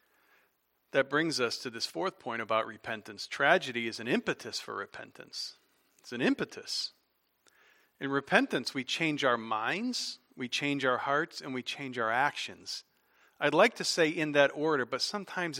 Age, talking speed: 40-59, 160 wpm